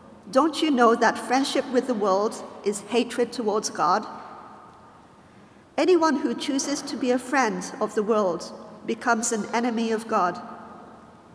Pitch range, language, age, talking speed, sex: 210-275 Hz, English, 50-69, 145 wpm, female